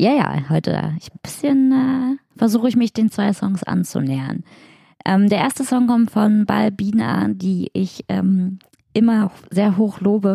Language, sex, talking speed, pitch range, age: German, female, 145 wpm, 160-220 Hz, 20-39